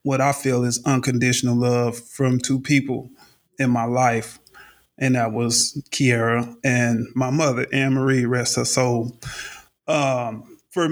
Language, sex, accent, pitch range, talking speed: English, male, American, 130-150 Hz, 135 wpm